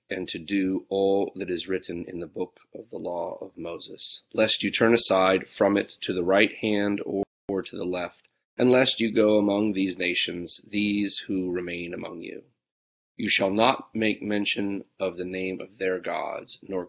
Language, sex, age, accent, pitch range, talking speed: English, male, 30-49, American, 95-105 Hz, 190 wpm